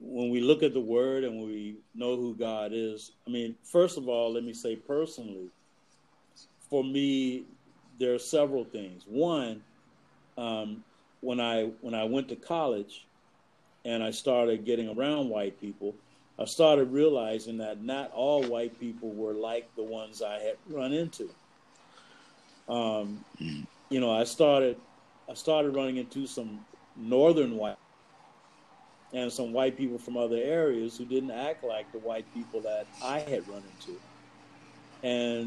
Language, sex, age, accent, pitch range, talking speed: English, male, 50-69, American, 115-140 Hz, 155 wpm